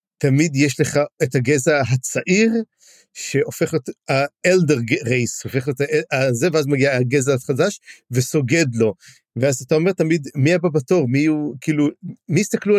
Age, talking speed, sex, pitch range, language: 50-69, 150 wpm, male, 135-180 Hz, Hebrew